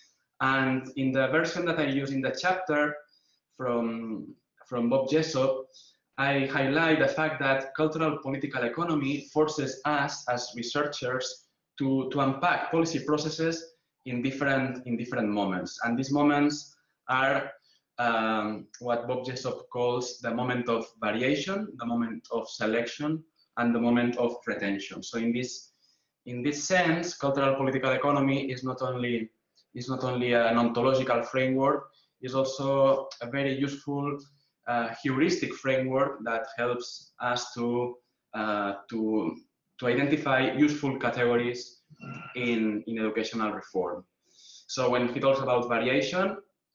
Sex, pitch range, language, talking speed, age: male, 120-145 Hz, English, 135 wpm, 20-39